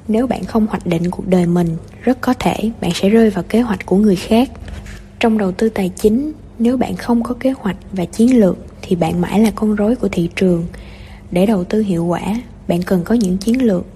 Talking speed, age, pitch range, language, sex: 230 wpm, 20-39, 185-230 Hz, Vietnamese, female